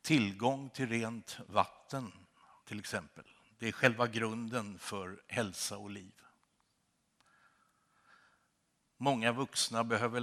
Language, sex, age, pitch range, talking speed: Swedish, male, 60-79, 105-125 Hz, 100 wpm